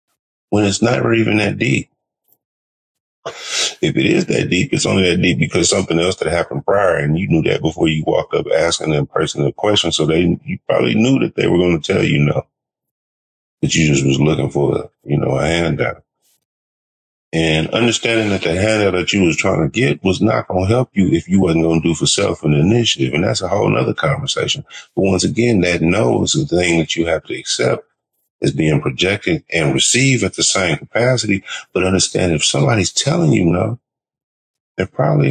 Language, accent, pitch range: English, American, 80-110 Hz